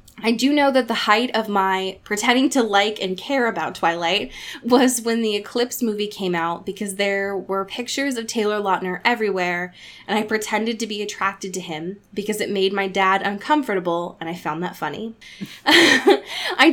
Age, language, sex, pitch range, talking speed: 10-29, English, female, 190-240 Hz, 180 wpm